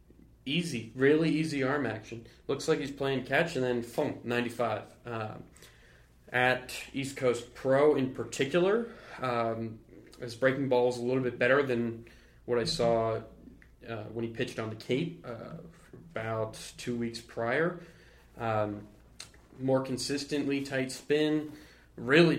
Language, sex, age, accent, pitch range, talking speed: English, male, 20-39, American, 115-130 Hz, 140 wpm